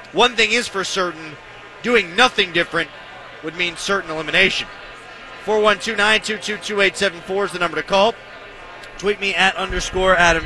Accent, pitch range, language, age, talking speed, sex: American, 170-205 Hz, English, 30-49, 130 wpm, male